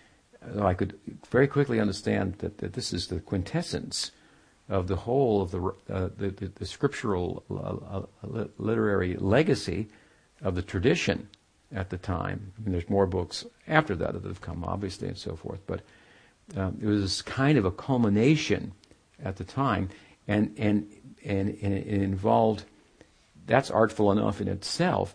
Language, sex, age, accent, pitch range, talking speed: English, male, 50-69, American, 95-110 Hz, 160 wpm